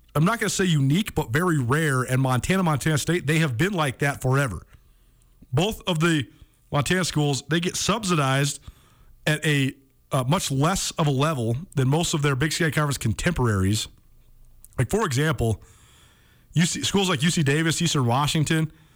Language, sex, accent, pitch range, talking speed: English, male, American, 130-170 Hz, 165 wpm